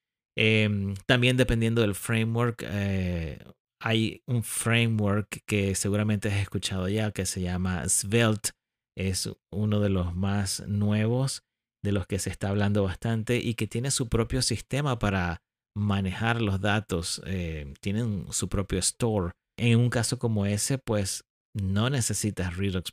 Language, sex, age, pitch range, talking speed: Spanish, male, 30-49, 100-120 Hz, 140 wpm